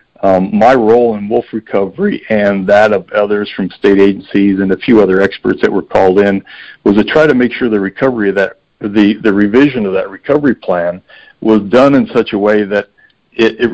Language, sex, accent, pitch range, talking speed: English, male, American, 95-110 Hz, 210 wpm